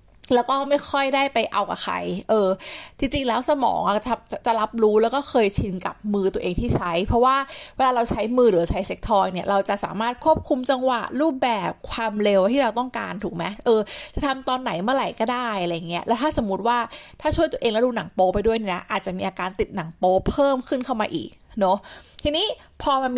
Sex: female